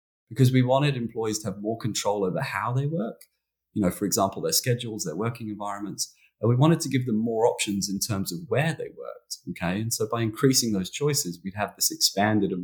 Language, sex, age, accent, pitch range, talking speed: English, male, 30-49, British, 100-140 Hz, 225 wpm